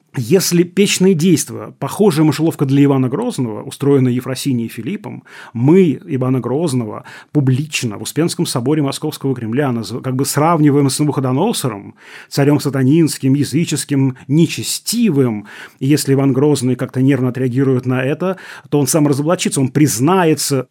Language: Russian